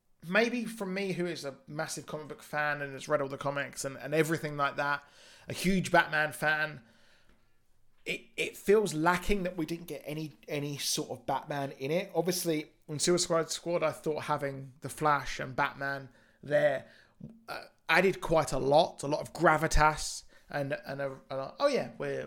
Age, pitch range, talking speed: 20-39, 135-170 Hz, 185 wpm